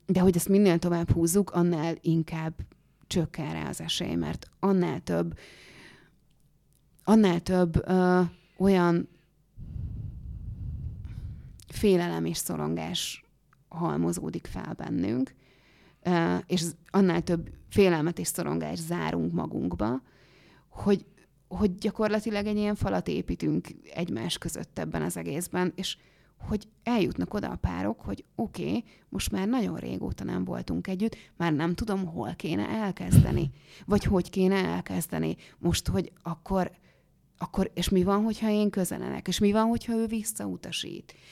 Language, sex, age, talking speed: Hungarian, female, 30-49, 125 wpm